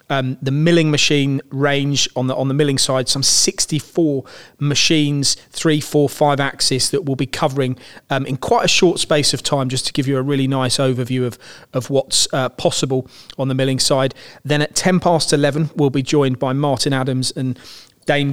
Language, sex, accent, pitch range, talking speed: English, male, British, 130-155 Hz, 195 wpm